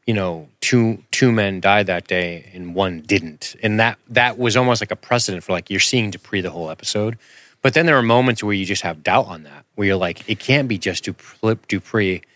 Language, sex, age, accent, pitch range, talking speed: English, male, 30-49, American, 95-120 Hz, 230 wpm